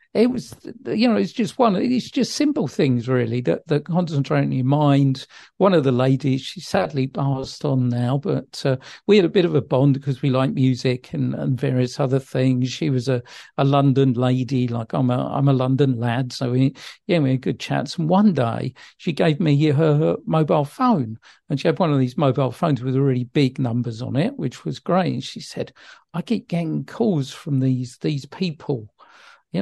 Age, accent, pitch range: 50-69, British, 130-180 Hz